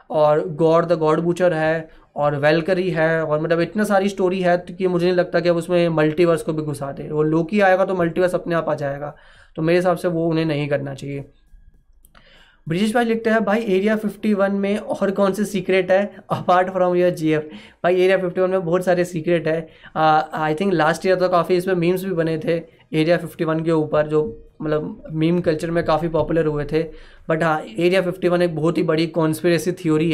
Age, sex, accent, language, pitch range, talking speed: 20-39, male, native, Hindi, 155-190 Hz, 205 wpm